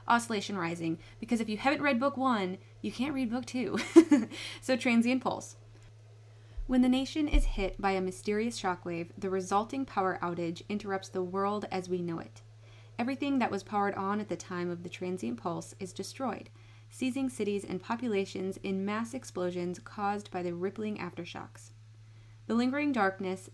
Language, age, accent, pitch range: English, 20-39, American, 175-230 Hz